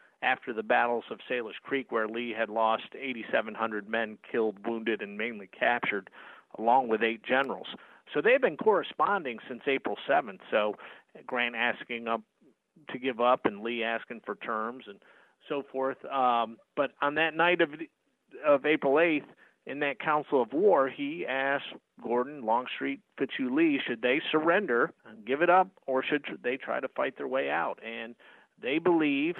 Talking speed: 170 wpm